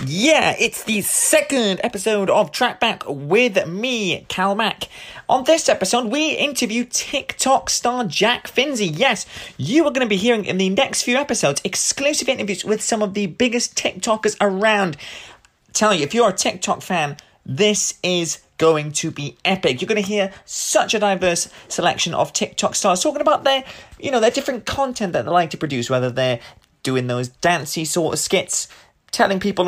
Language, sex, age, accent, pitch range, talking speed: English, male, 30-49, British, 175-240 Hz, 175 wpm